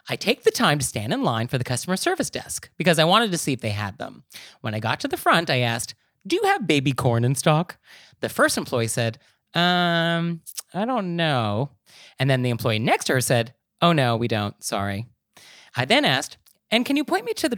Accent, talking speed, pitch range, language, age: American, 230 wpm, 120-195 Hz, English, 30-49